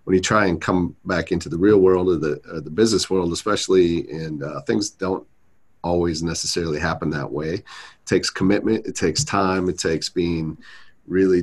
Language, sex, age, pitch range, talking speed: English, male, 40-59, 80-95 Hz, 190 wpm